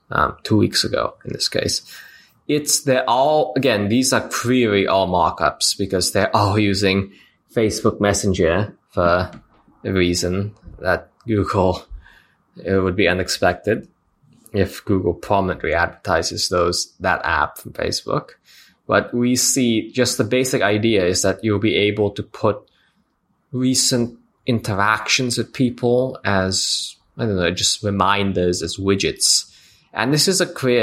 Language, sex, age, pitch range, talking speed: English, male, 20-39, 95-120 Hz, 140 wpm